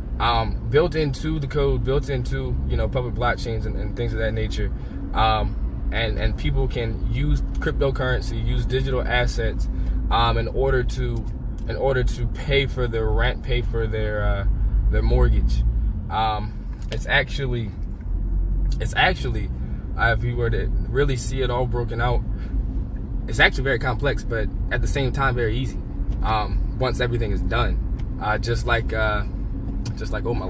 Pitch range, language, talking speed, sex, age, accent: 100-125 Hz, English, 165 wpm, male, 20-39, American